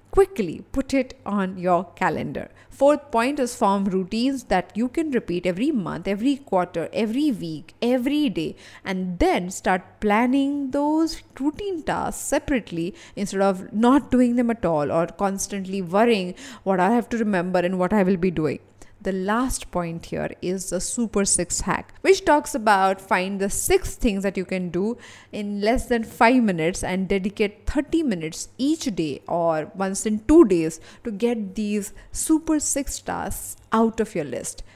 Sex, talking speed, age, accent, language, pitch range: female, 170 wpm, 20-39, Indian, English, 185-260 Hz